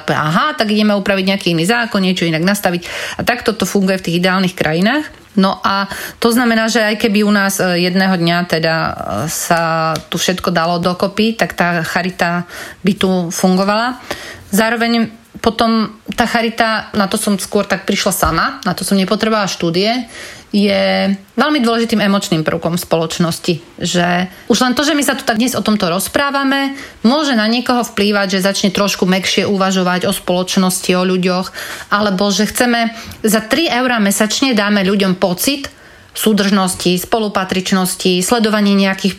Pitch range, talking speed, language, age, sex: 185-225 Hz, 160 wpm, Slovak, 30-49, female